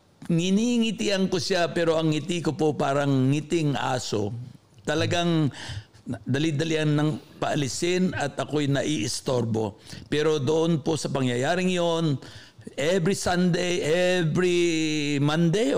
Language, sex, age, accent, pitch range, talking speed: Filipino, male, 60-79, native, 130-170 Hz, 105 wpm